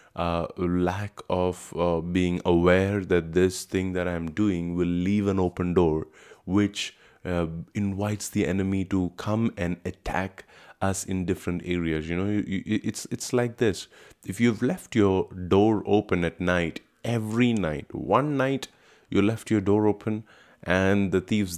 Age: 20-39